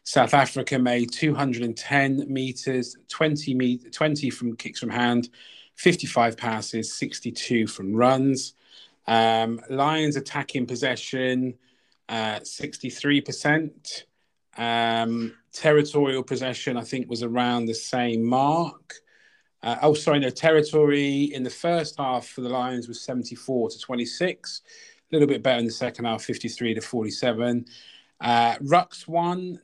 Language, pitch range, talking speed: English, 120-140 Hz, 130 wpm